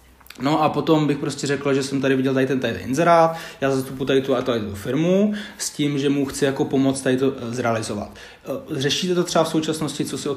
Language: Czech